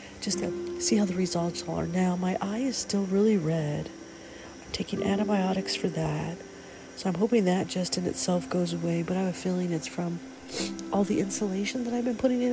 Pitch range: 175-220 Hz